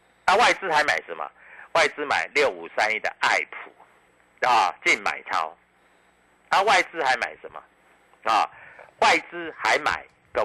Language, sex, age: Chinese, male, 50-69